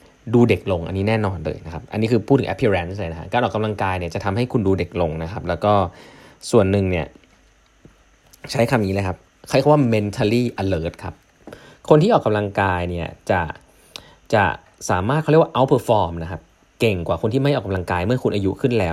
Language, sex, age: Thai, male, 20-39